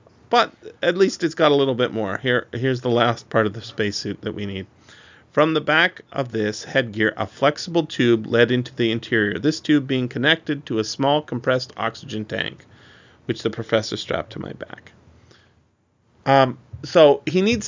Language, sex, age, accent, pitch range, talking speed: English, male, 30-49, American, 110-140 Hz, 185 wpm